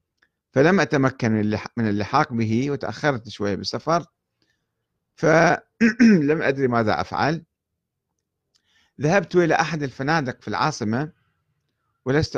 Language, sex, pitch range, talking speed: Arabic, male, 110-150 Hz, 90 wpm